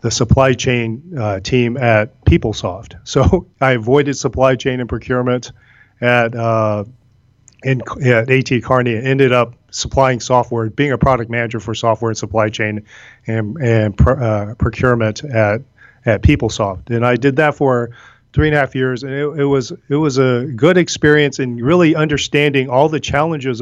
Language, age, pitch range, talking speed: English, 40-59, 115-135 Hz, 170 wpm